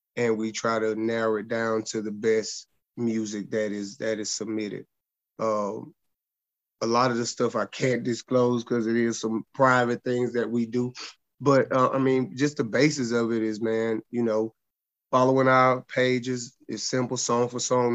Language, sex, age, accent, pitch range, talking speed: English, male, 30-49, American, 115-125 Hz, 185 wpm